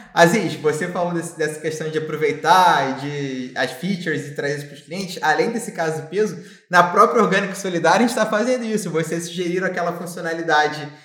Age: 20-39